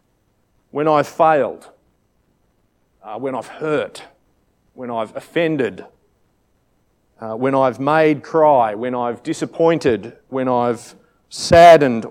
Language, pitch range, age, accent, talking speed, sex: English, 120-155 Hz, 40-59, Australian, 105 wpm, male